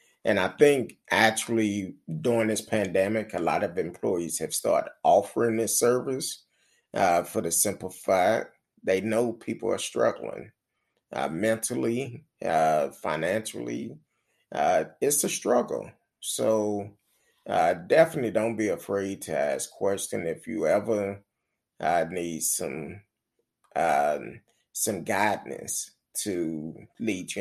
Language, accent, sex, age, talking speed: English, American, male, 30-49, 125 wpm